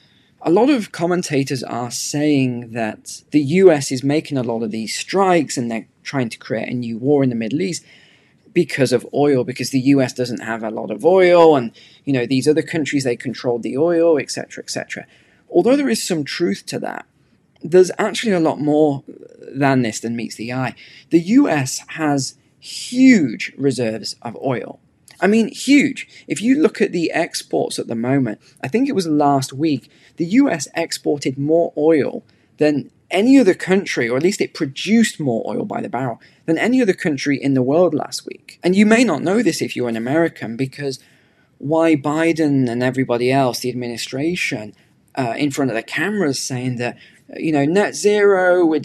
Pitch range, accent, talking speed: 130-175 Hz, British, 190 wpm